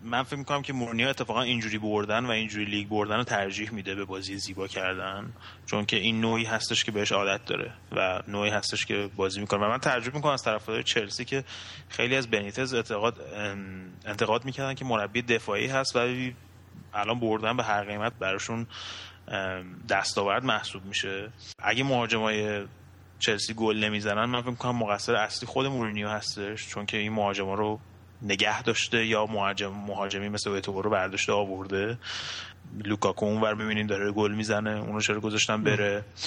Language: Persian